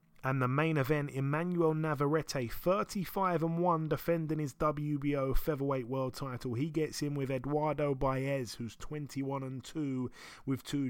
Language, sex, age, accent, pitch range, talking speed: English, male, 30-49, British, 125-155 Hz, 150 wpm